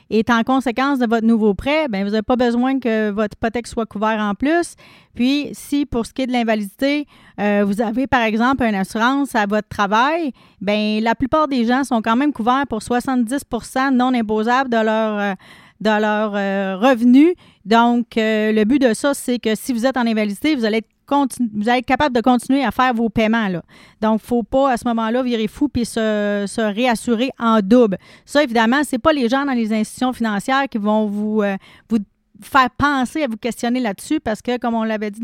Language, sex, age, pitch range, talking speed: French, female, 40-59, 220-255 Hz, 215 wpm